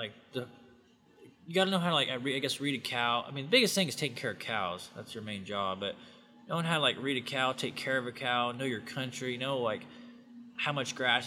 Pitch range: 115-135 Hz